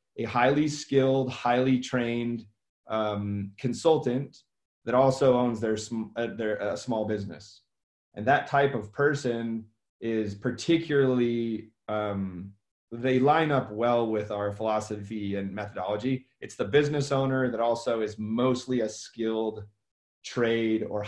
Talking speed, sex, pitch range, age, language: 130 wpm, male, 105-130 Hz, 30-49, English